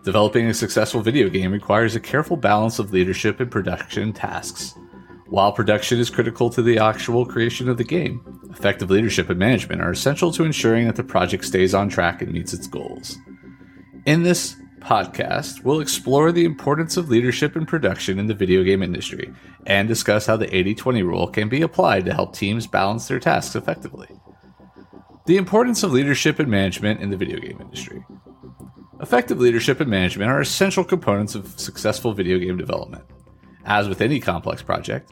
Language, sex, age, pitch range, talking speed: English, male, 30-49, 100-140 Hz, 175 wpm